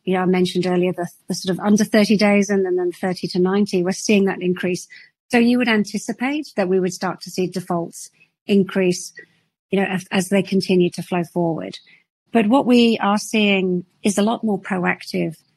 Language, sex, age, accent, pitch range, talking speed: English, female, 50-69, British, 175-200 Hz, 210 wpm